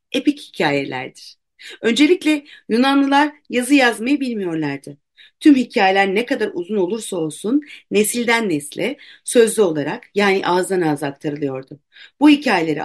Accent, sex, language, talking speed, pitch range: native, female, Turkish, 110 wpm, 155-245 Hz